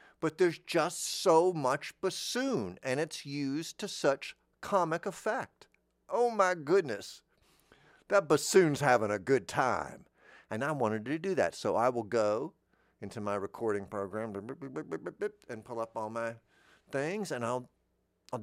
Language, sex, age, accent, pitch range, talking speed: English, male, 50-69, American, 105-155 Hz, 145 wpm